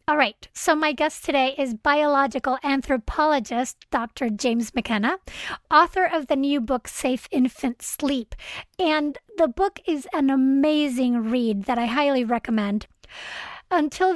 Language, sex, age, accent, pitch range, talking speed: English, female, 30-49, American, 245-305 Hz, 135 wpm